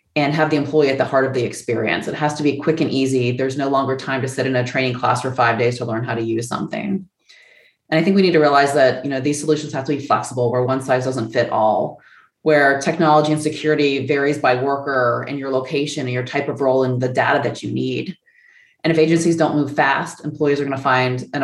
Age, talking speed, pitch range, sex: 20-39, 250 wpm, 130-160 Hz, female